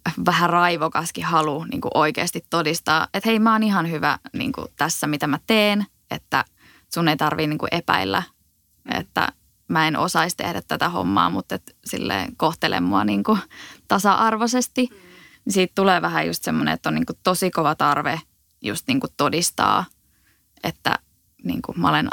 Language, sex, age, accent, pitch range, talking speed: Finnish, female, 20-39, native, 155-185 Hz, 125 wpm